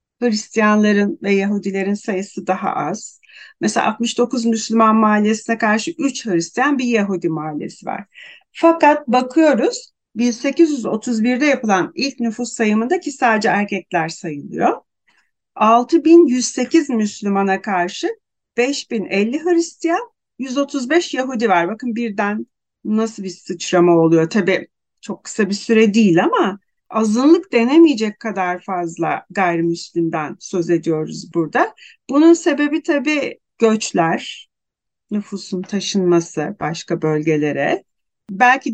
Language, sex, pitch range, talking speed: Turkish, female, 185-255 Hz, 100 wpm